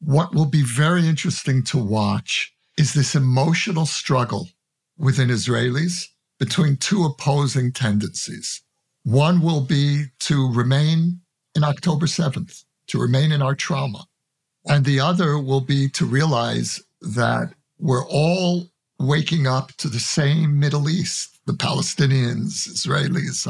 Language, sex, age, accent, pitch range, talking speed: English, male, 60-79, American, 130-165 Hz, 130 wpm